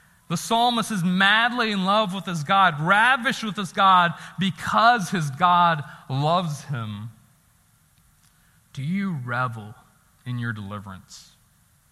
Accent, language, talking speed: American, English, 120 wpm